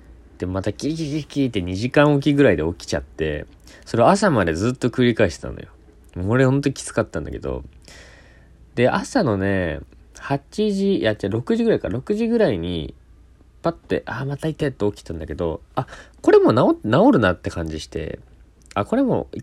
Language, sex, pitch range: Japanese, male, 80-120 Hz